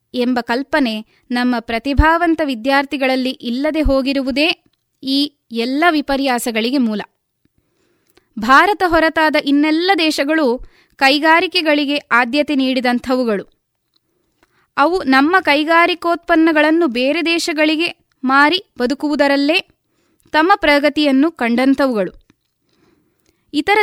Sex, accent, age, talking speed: female, native, 20-39, 75 wpm